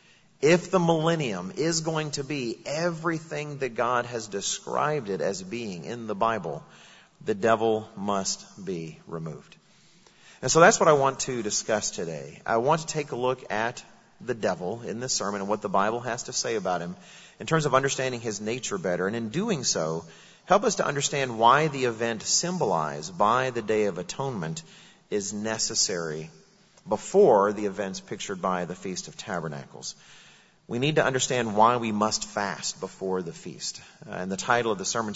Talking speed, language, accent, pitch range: 180 wpm, English, American, 105-140 Hz